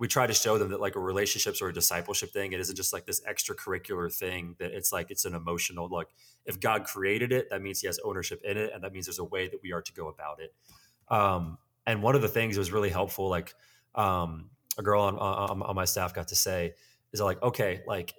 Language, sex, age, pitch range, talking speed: English, male, 20-39, 95-130 Hz, 255 wpm